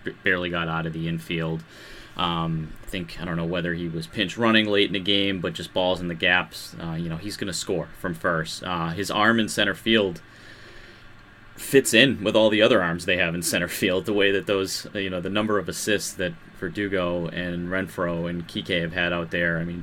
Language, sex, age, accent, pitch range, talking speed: English, male, 30-49, American, 85-100 Hz, 225 wpm